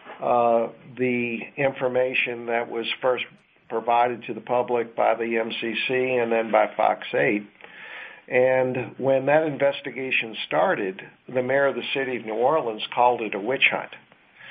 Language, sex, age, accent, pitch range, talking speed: English, male, 50-69, American, 120-145 Hz, 150 wpm